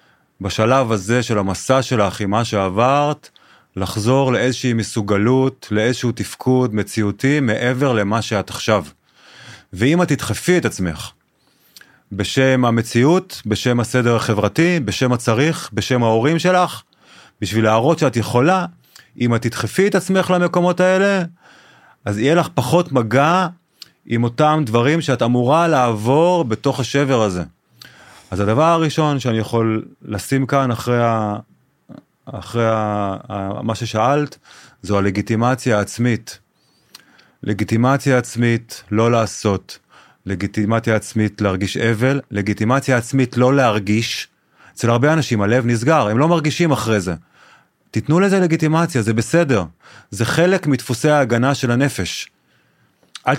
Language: Hebrew